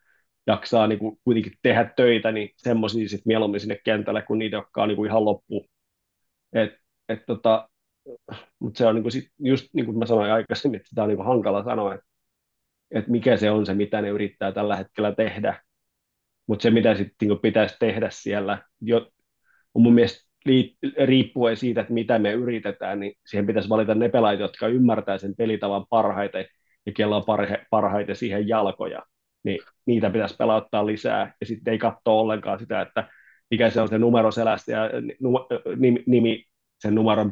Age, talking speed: 30-49, 165 wpm